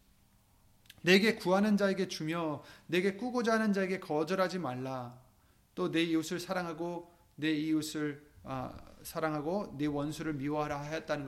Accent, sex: native, male